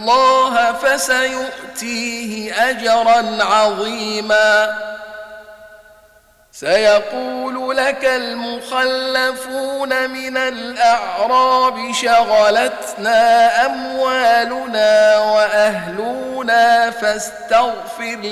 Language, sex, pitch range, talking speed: Arabic, male, 215-255 Hz, 45 wpm